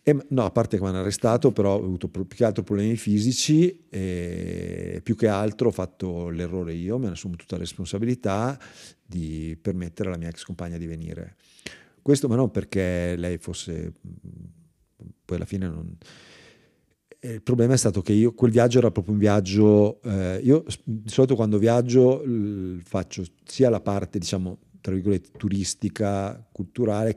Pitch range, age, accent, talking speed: 90-115 Hz, 50-69, native, 165 wpm